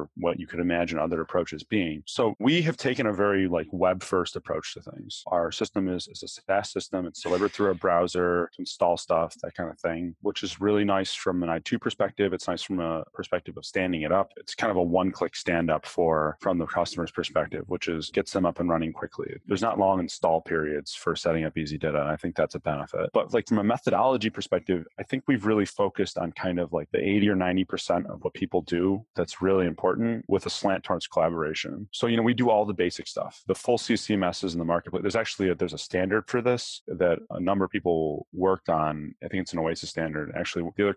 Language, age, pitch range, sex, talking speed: English, 30-49, 85-100 Hz, male, 235 wpm